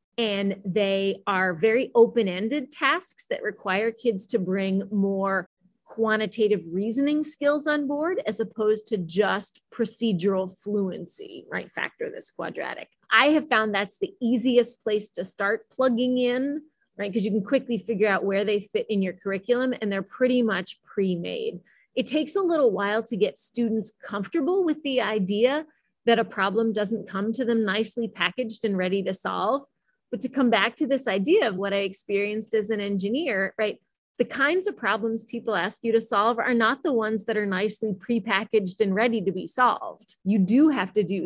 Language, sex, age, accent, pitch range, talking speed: English, female, 30-49, American, 195-245 Hz, 180 wpm